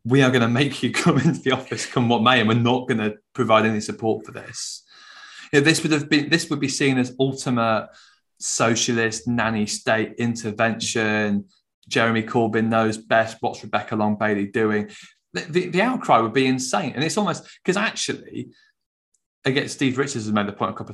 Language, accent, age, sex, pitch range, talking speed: English, British, 20-39, male, 105-130 Hz, 195 wpm